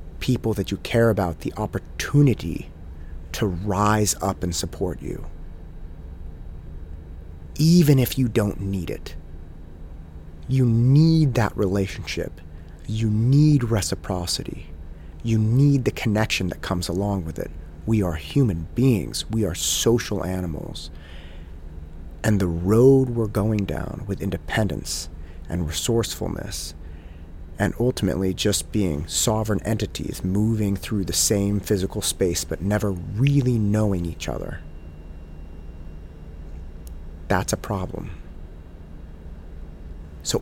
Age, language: 30-49, English